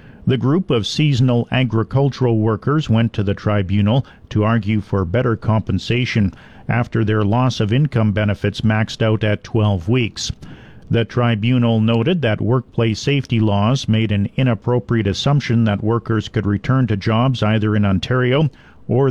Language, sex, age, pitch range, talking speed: English, male, 50-69, 105-125 Hz, 150 wpm